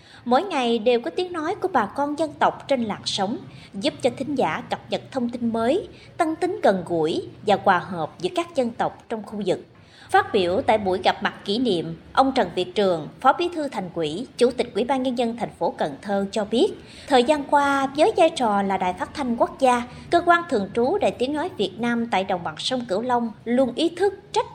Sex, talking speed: male, 235 wpm